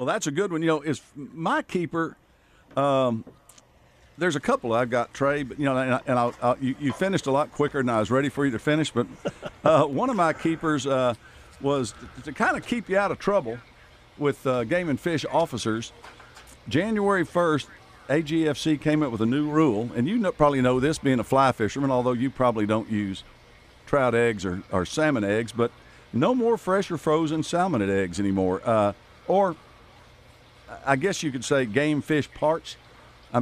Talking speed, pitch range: 200 wpm, 120-150 Hz